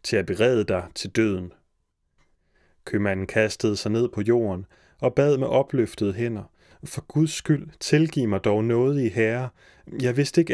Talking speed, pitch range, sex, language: 165 wpm, 105-135 Hz, male, Danish